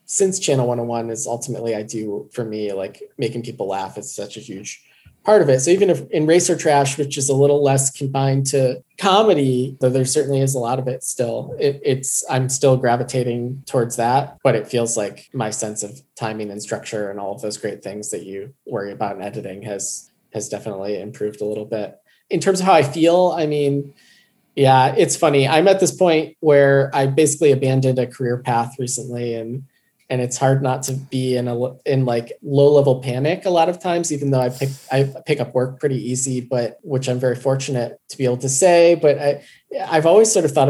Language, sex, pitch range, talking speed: English, male, 120-145 Hz, 215 wpm